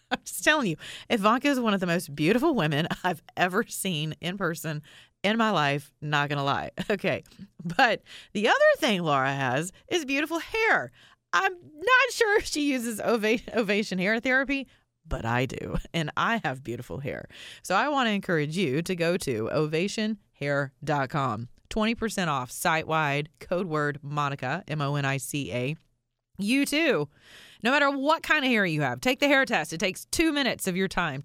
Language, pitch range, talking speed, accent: English, 145-215 Hz, 170 wpm, American